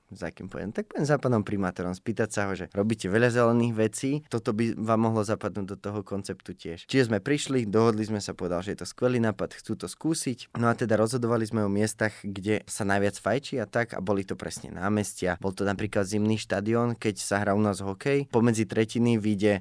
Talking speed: 215 wpm